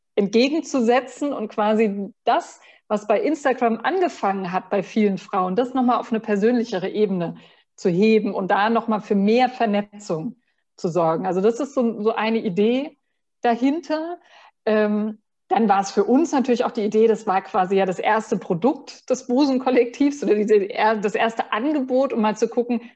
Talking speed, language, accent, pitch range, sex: 160 wpm, German, German, 210-275 Hz, female